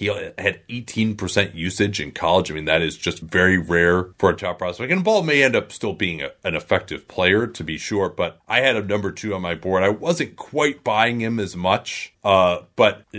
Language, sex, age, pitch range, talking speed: English, male, 30-49, 90-110 Hz, 225 wpm